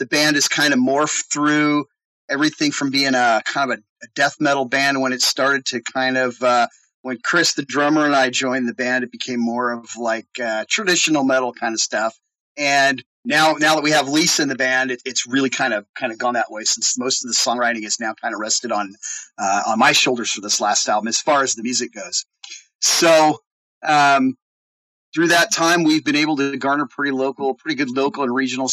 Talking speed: 220 wpm